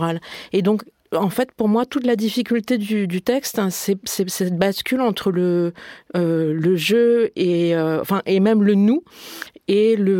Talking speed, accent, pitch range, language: 195 wpm, French, 185-235 Hz, French